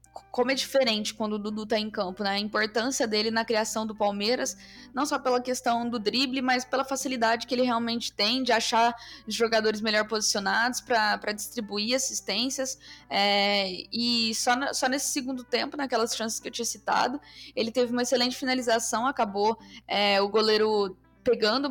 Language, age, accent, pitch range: Portuguese, 10-29, Brazilian, 215-250 Hz